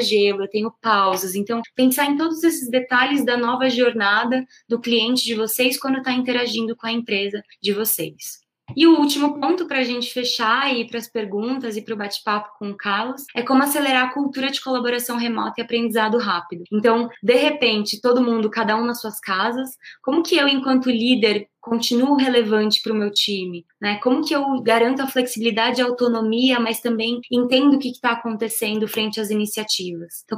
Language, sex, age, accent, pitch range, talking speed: Portuguese, female, 20-39, Brazilian, 220-255 Hz, 190 wpm